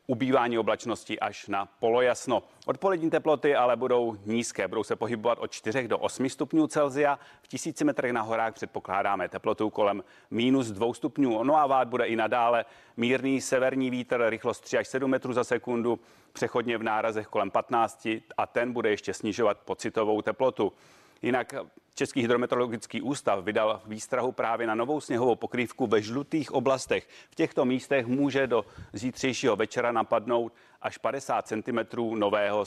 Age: 30-49